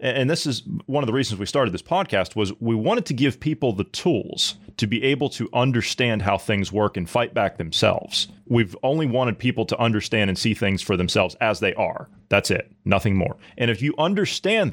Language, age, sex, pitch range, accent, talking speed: English, 30-49, male, 110-145 Hz, American, 215 wpm